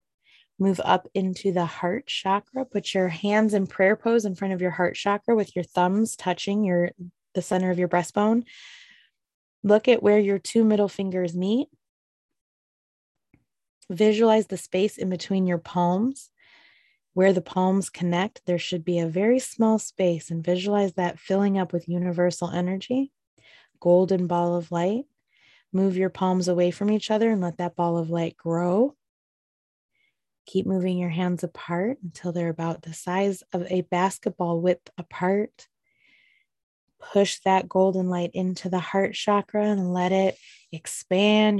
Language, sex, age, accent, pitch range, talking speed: English, female, 20-39, American, 180-205 Hz, 155 wpm